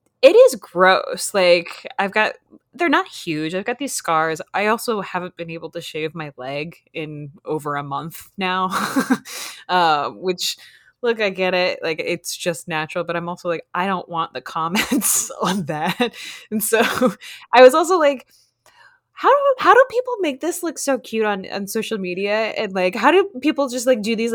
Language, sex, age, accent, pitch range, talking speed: English, female, 20-39, American, 170-260 Hz, 190 wpm